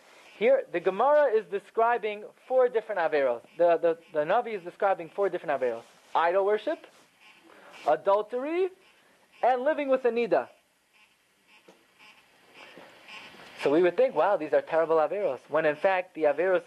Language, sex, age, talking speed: English, male, 30-49, 135 wpm